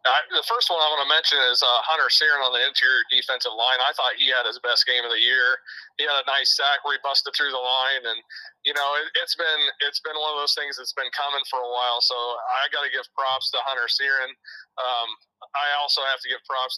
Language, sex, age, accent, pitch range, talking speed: English, male, 30-49, American, 120-140 Hz, 260 wpm